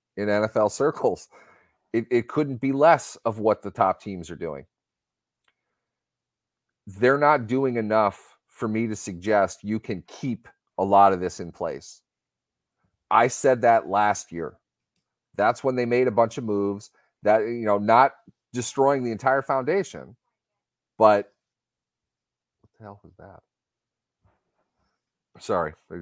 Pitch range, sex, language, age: 95-120 Hz, male, English, 30-49